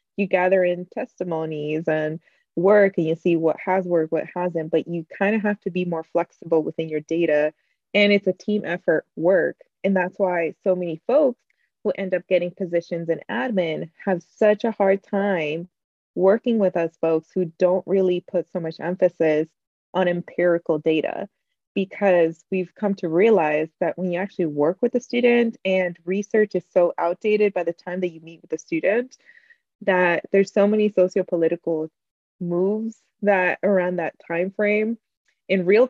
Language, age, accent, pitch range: English, 20-39, American, 170-200 Hz